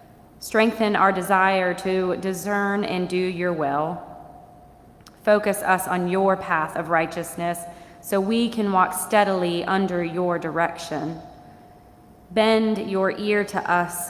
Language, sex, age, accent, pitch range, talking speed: English, female, 20-39, American, 175-200 Hz, 125 wpm